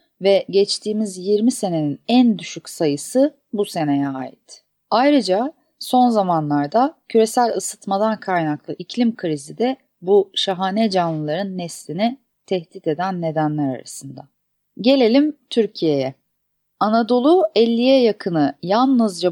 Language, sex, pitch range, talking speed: Turkish, female, 170-240 Hz, 105 wpm